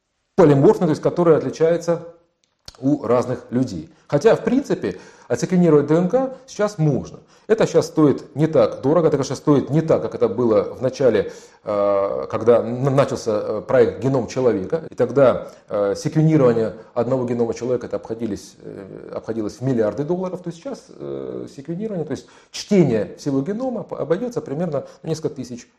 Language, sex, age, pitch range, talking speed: Russian, male, 40-59, 130-180 Hz, 145 wpm